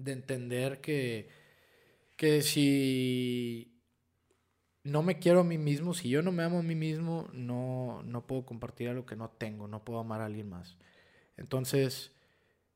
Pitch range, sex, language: 120-150 Hz, male, Spanish